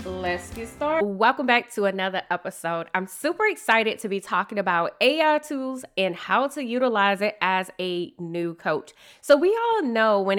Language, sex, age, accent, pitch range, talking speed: English, female, 20-39, American, 190-255 Hz, 180 wpm